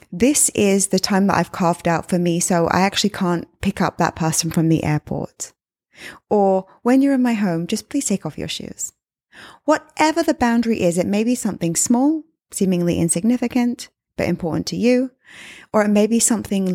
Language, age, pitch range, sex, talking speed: English, 20-39, 170-235 Hz, female, 190 wpm